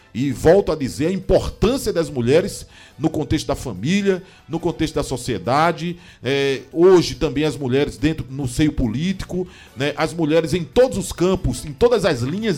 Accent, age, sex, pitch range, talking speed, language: Brazilian, 50-69, male, 115-155 Hz, 170 wpm, Portuguese